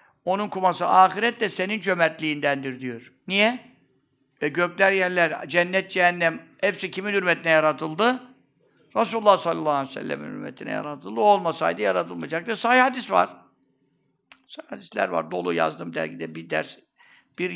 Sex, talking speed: male, 125 wpm